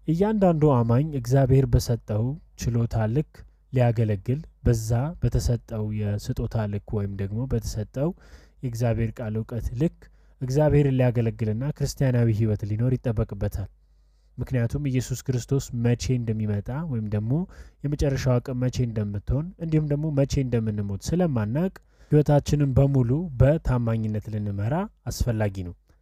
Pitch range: 110-145 Hz